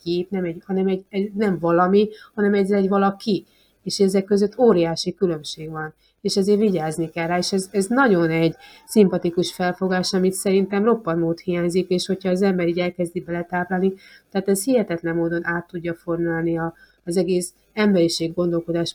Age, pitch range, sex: 30-49, 170-190 Hz, female